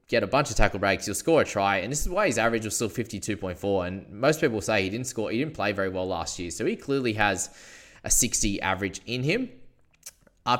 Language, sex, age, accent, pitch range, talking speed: English, male, 20-39, Australian, 95-125 Hz, 245 wpm